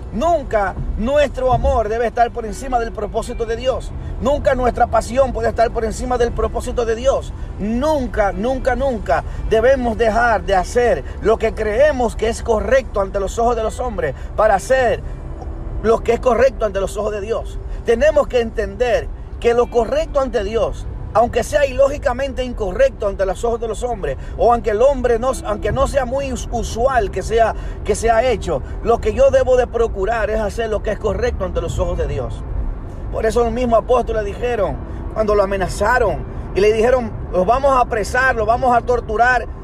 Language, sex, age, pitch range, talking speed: Spanish, male, 40-59, 225-265 Hz, 185 wpm